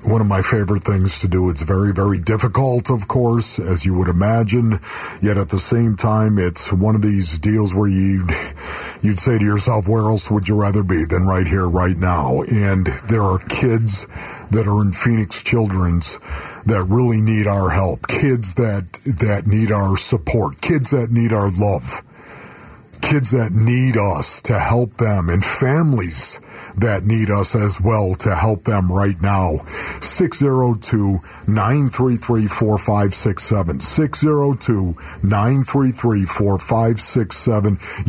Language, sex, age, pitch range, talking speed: English, male, 50-69, 100-125 Hz, 140 wpm